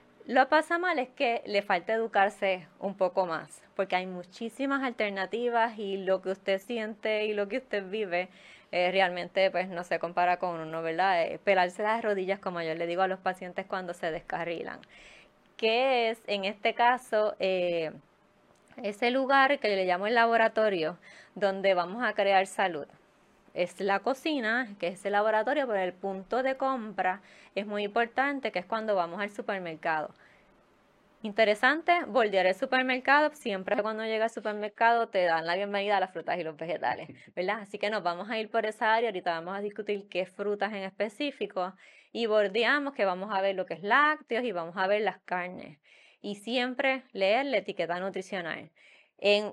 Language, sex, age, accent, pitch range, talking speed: Spanish, female, 20-39, American, 185-230 Hz, 180 wpm